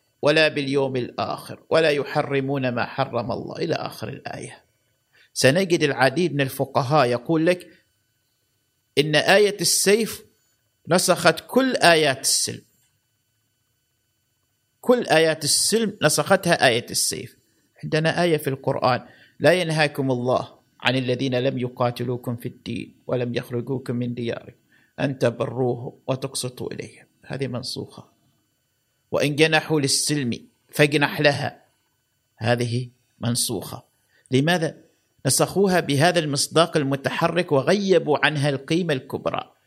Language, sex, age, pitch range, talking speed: Arabic, male, 50-69, 125-150 Hz, 105 wpm